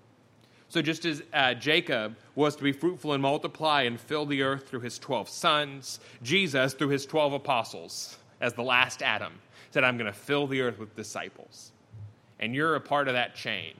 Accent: American